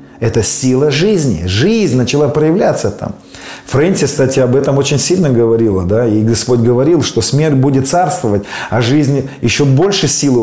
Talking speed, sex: 155 wpm, male